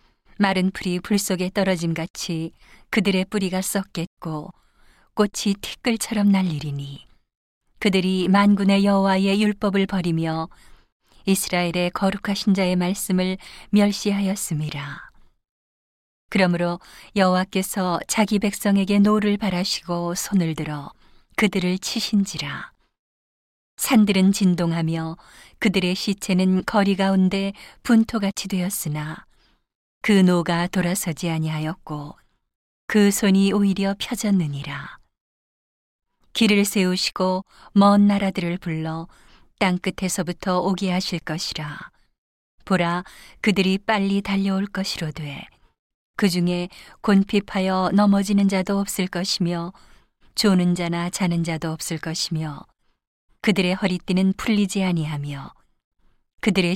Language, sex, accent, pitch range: Korean, female, native, 175-200 Hz